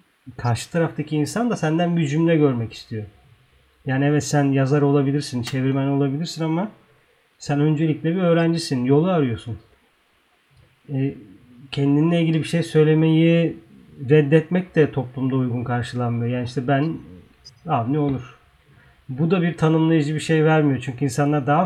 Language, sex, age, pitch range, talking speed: Turkish, male, 40-59, 130-155 Hz, 140 wpm